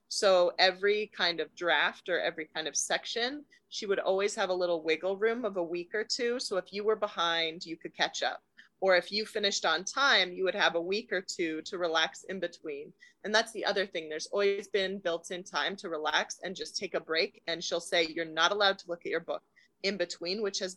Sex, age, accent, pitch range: female, 30-49, American, 175-215 Hz